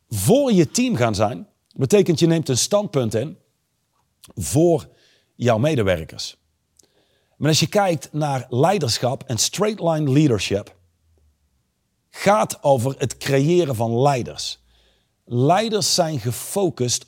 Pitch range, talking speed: 120-175 Hz, 115 wpm